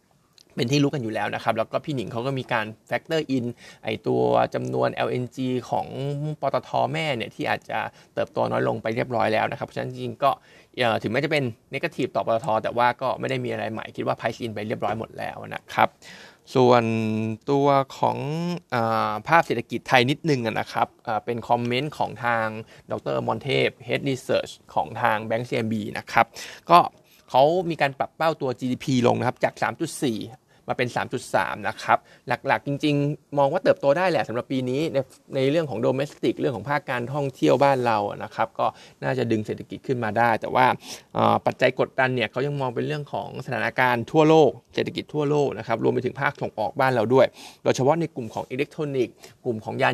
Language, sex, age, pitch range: Thai, male, 20-39, 115-145 Hz